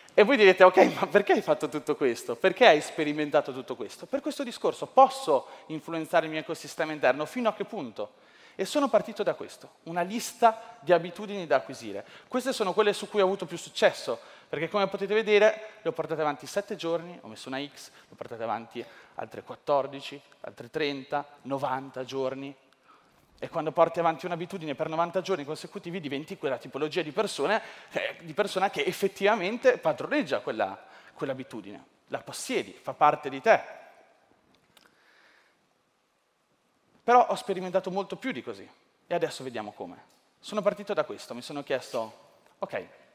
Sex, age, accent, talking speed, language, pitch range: male, 30-49, native, 160 wpm, Italian, 140-200 Hz